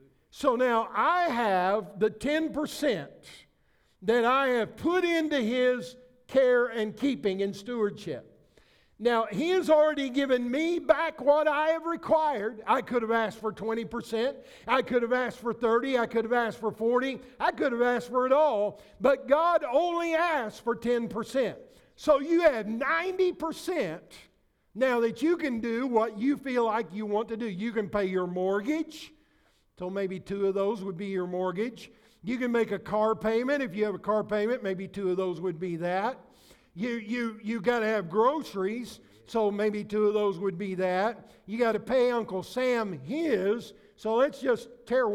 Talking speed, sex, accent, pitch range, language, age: 180 wpm, male, American, 210-260 Hz, English, 50-69